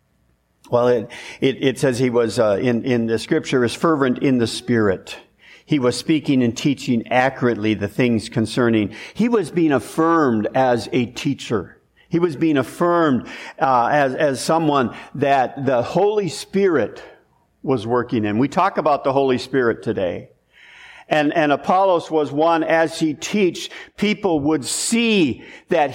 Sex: male